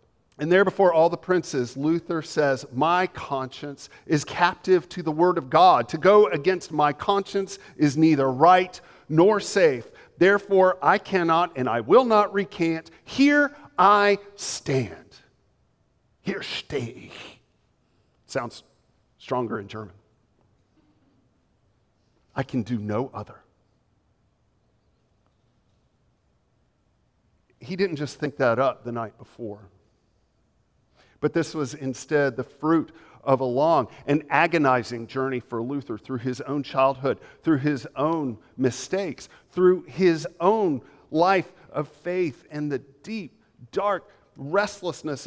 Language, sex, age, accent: English, male, 50-69, American